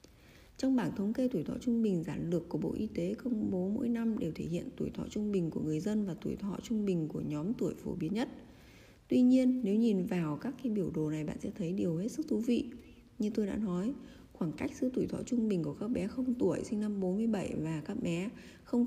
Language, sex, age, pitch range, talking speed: Vietnamese, female, 20-39, 180-235 Hz, 255 wpm